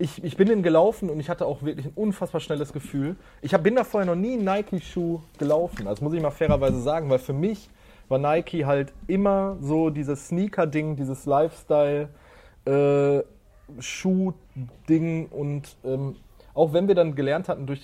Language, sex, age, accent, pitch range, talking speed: German, male, 30-49, German, 135-175 Hz, 175 wpm